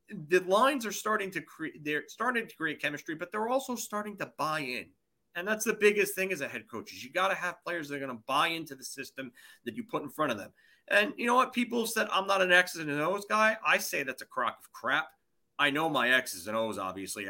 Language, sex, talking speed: English, male, 255 wpm